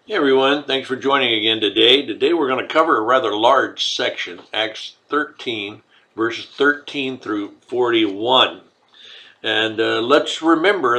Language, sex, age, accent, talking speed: English, male, 60-79, American, 140 wpm